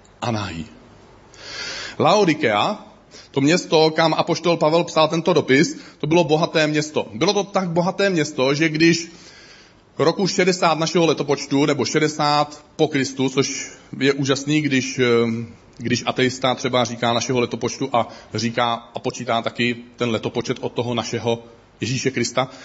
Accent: native